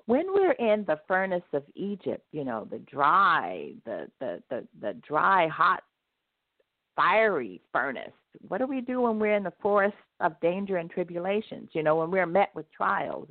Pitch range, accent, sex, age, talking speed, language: 155-220 Hz, American, female, 50-69, 165 wpm, English